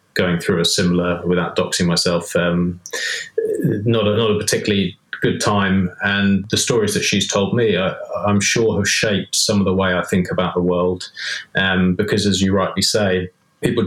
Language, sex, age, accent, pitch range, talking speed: English, male, 20-39, British, 90-100 Hz, 175 wpm